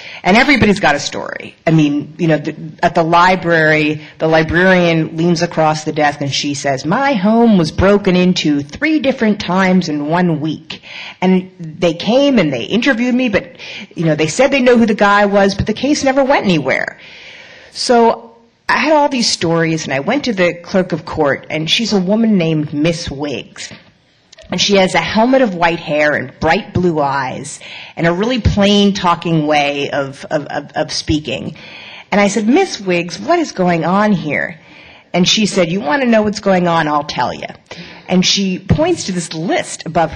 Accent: American